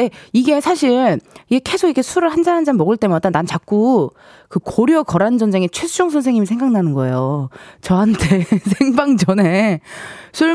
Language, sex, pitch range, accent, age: Korean, female, 175-290 Hz, native, 20-39